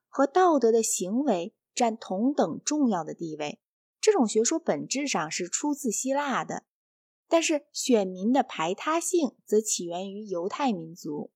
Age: 20-39